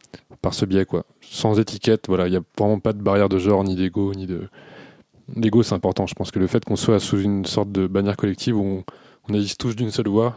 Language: French